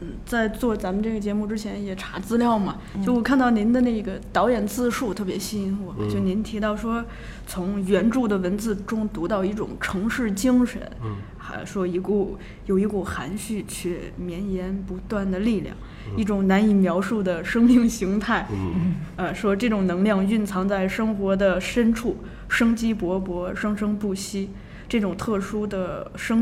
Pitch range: 190-230 Hz